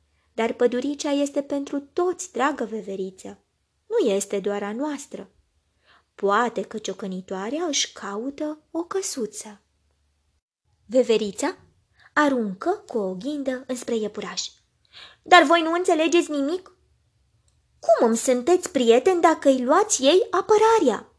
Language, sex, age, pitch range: Romanian, female, 20-39, 205-290 Hz